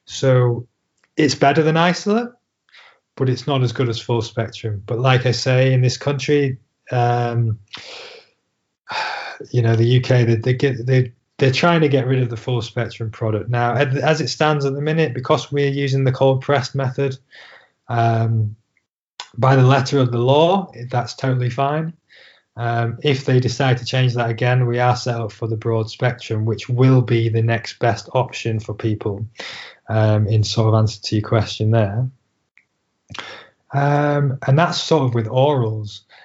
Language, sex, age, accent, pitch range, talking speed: English, male, 20-39, British, 115-140 Hz, 170 wpm